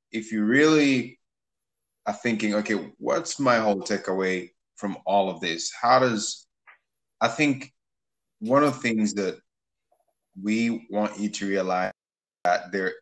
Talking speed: 140 wpm